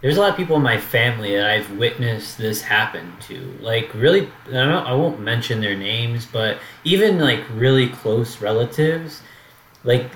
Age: 20-39